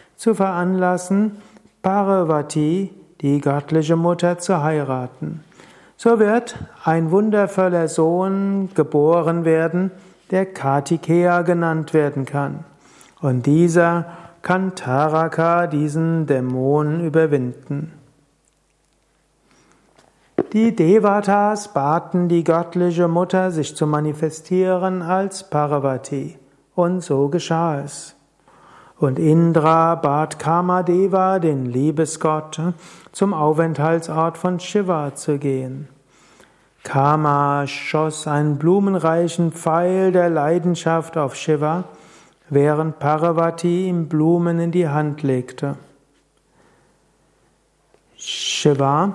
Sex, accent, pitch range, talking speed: male, German, 150-180 Hz, 90 wpm